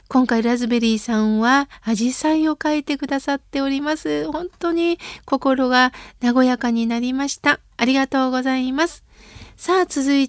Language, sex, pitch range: Japanese, female, 245-300 Hz